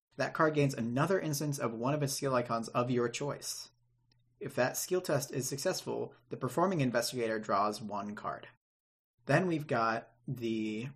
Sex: male